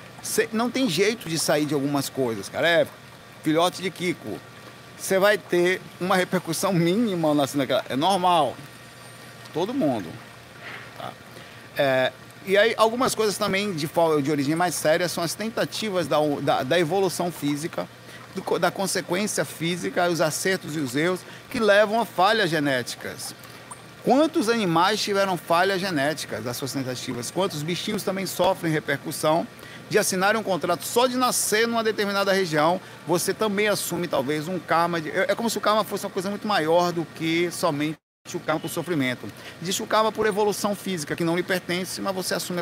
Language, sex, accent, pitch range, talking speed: Portuguese, male, Brazilian, 145-195 Hz, 170 wpm